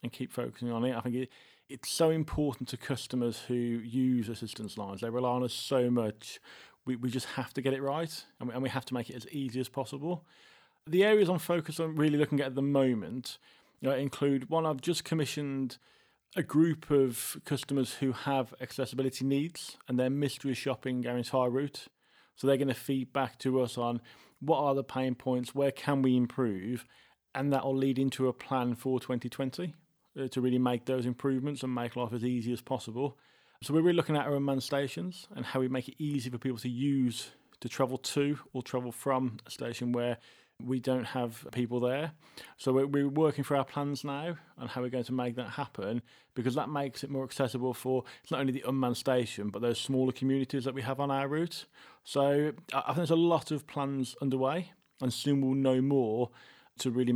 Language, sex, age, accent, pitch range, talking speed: English, male, 30-49, British, 125-140 Hz, 210 wpm